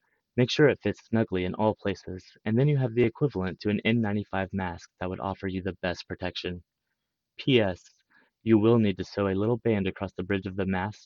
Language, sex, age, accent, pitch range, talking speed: English, male, 20-39, American, 90-105 Hz, 215 wpm